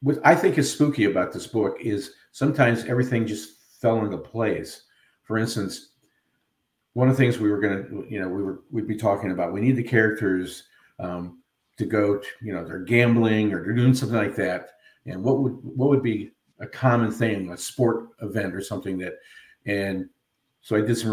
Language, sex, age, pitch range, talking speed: English, male, 50-69, 95-120 Hz, 200 wpm